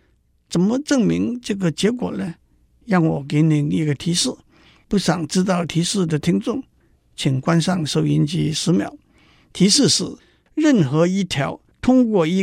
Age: 60-79